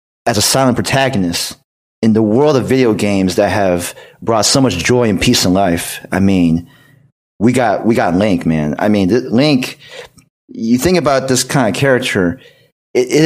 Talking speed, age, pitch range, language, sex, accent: 175 wpm, 30-49, 110-150 Hz, English, male, American